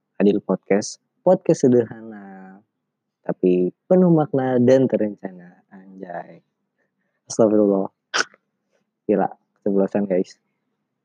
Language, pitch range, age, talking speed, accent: Indonesian, 100-135 Hz, 20-39, 80 wpm, native